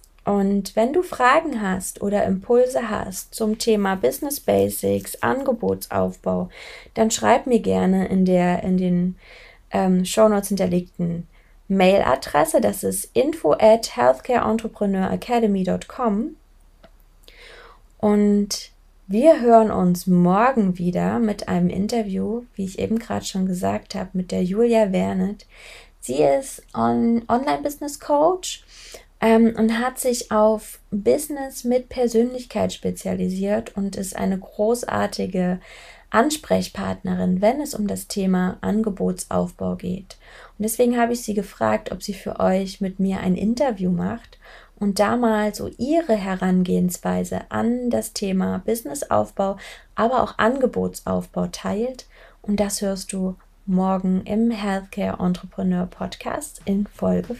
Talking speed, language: 120 wpm, German